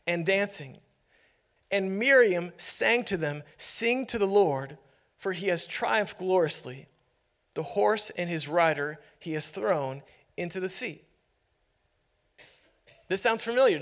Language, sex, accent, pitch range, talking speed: English, male, American, 170-225 Hz, 130 wpm